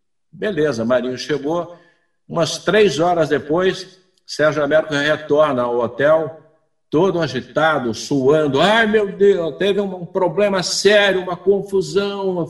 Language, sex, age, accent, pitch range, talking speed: Portuguese, male, 60-79, Brazilian, 145-190 Hz, 120 wpm